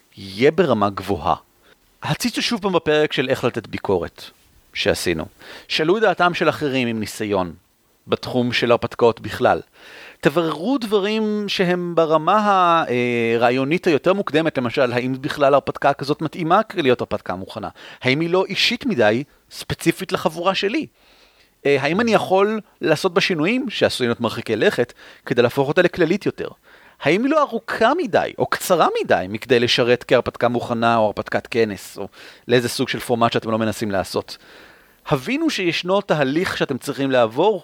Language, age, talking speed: Hebrew, 40-59, 145 wpm